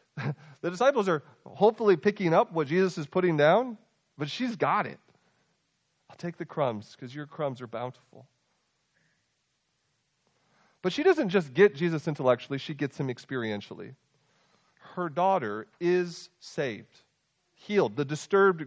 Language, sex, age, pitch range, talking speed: English, male, 40-59, 135-190 Hz, 135 wpm